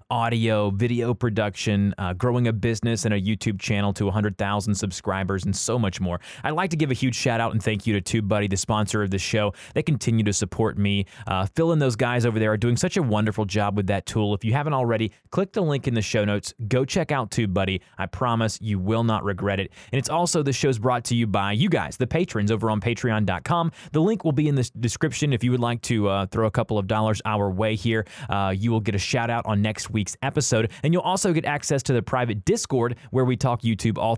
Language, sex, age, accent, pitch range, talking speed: English, male, 20-39, American, 105-130 Hz, 245 wpm